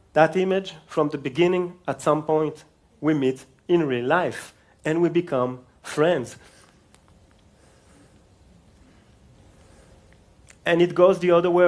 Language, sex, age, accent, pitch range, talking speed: English, male, 40-59, French, 130-190 Hz, 120 wpm